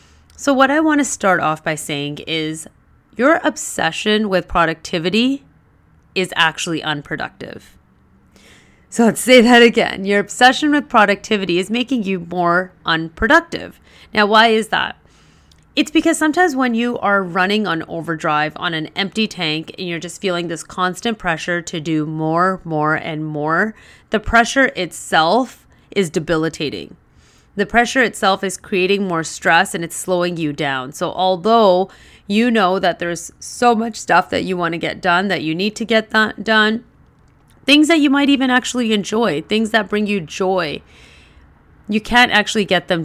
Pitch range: 165-220 Hz